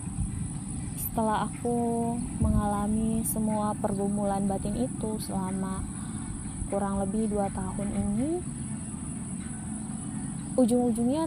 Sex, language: female, Indonesian